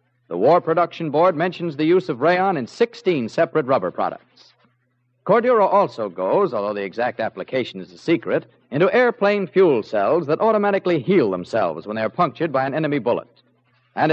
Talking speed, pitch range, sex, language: 170 wpm, 130-175 Hz, male, English